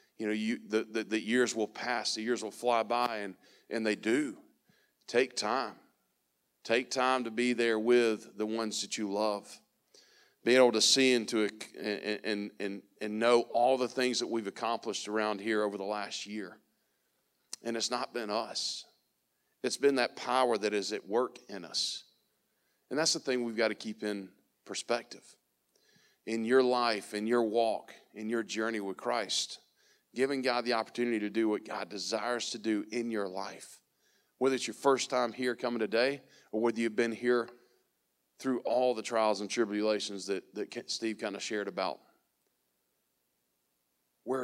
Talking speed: 175 wpm